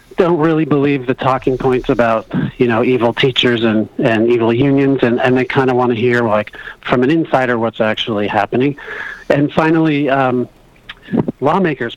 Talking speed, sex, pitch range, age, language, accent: 170 wpm, male, 125-155 Hz, 40-59, English, American